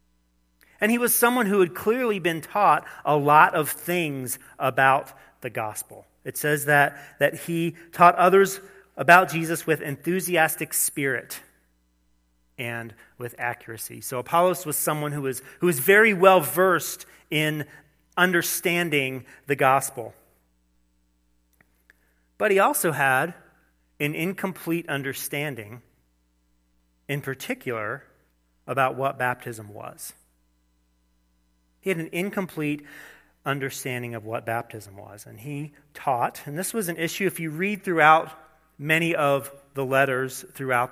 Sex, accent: male, American